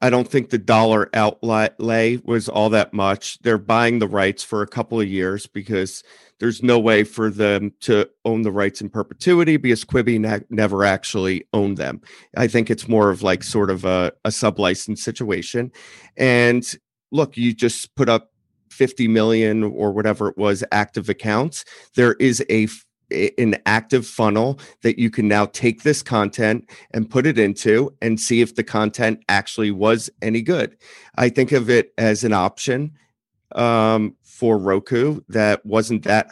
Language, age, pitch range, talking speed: English, 40-59, 105-120 Hz, 170 wpm